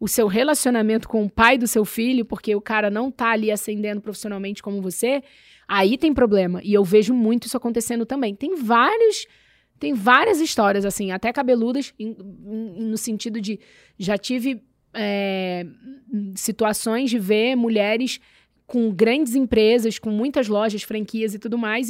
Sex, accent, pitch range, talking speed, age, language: female, Brazilian, 210-260 Hz, 160 wpm, 20-39, Portuguese